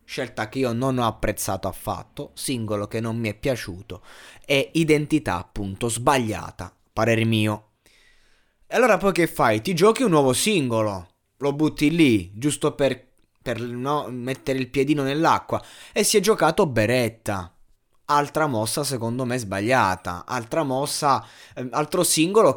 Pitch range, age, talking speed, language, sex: 110-150 Hz, 20-39, 145 wpm, Italian, male